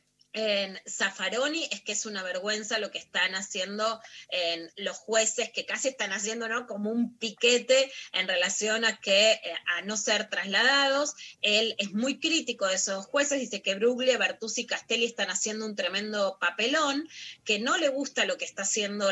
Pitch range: 205-260 Hz